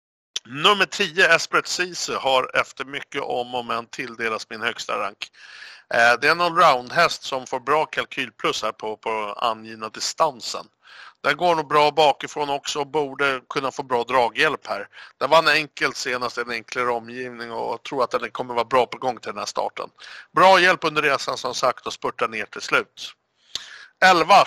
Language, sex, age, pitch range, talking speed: Swedish, male, 60-79, 125-165 Hz, 180 wpm